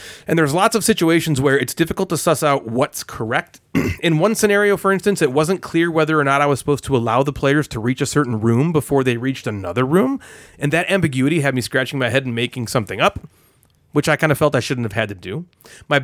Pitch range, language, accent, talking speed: 130-175 Hz, English, American, 245 wpm